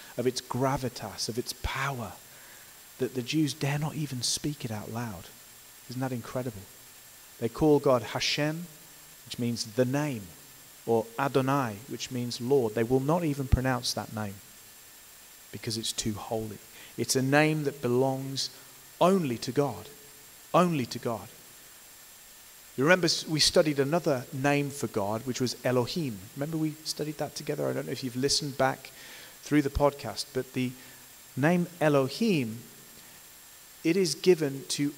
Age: 30-49